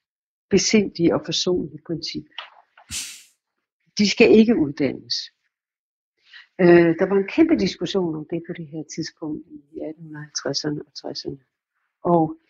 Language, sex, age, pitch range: Danish, female, 60-79, 170-225 Hz